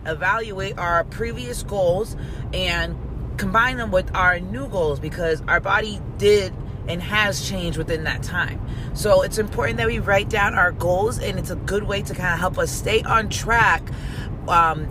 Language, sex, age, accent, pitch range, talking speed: English, female, 30-49, American, 125-165 Hz, 180 wpm